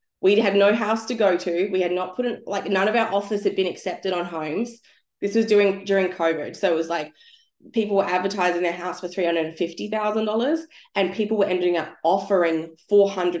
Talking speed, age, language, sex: 205 wpm, 20-39, English, female